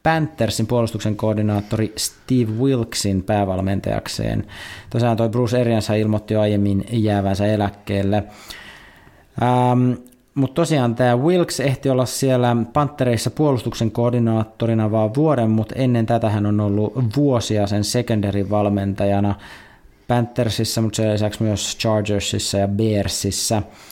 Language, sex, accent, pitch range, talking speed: Finnish, male, native, 100-120 Hz, 115 wpm